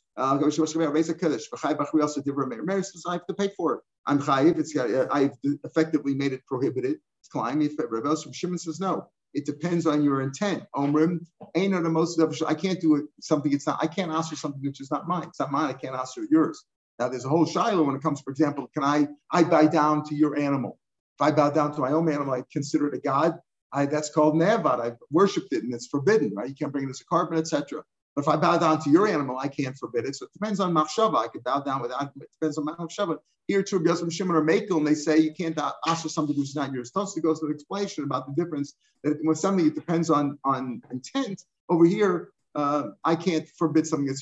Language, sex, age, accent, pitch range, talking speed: English, male, 50-69, American, 145-175 Hz, 230 wpm